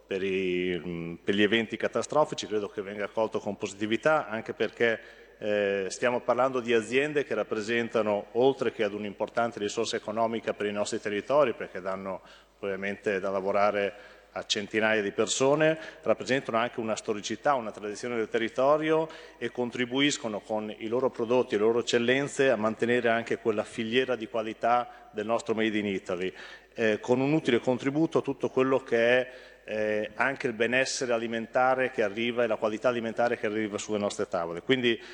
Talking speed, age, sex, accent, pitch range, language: 160 wpm, 40-59, male, native, 105-125 Hz, Italian